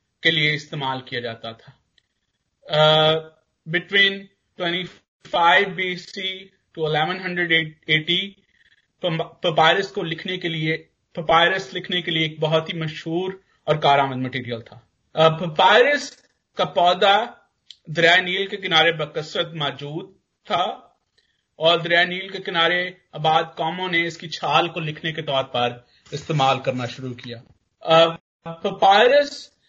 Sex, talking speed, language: male, 110 wpm, Hindi